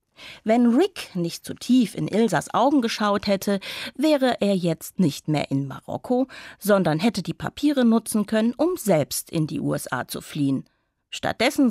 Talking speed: 160 wpm